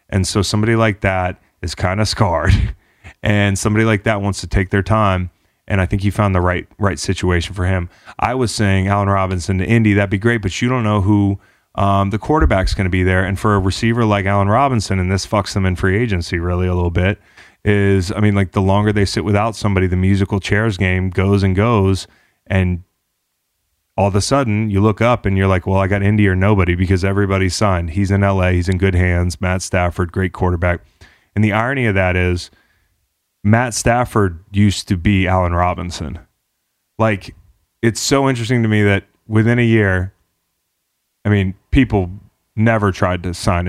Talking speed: 200 wpm